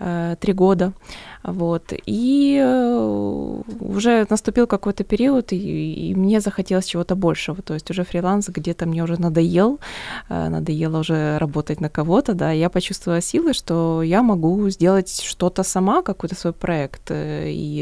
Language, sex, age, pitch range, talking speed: Ukrainian, female, 20-39, 160-195 Hz, 135 wpm